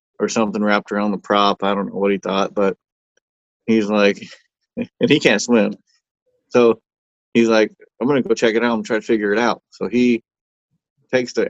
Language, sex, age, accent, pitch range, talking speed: English, male, 20-39, American, 100-115 Hz, 200 wpm